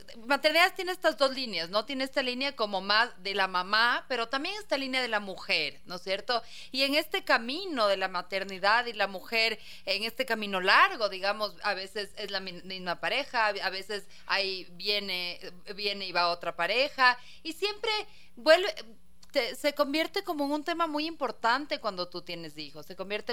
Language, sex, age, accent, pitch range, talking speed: Spanish, female, 30-49, Mexican, 190-265 Hz, 185 wpm